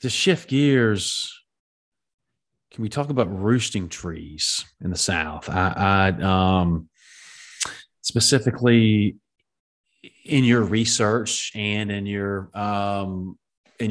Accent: American